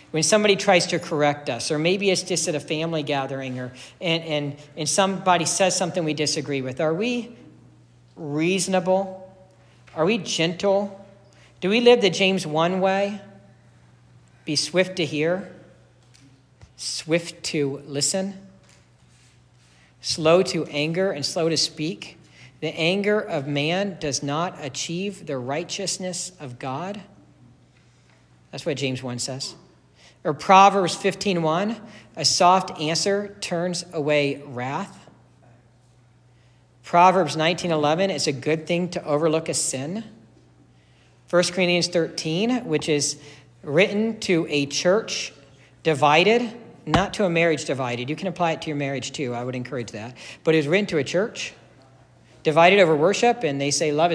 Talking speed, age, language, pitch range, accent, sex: 140 wpm, 50-69, English, 135-185 Hz, American, male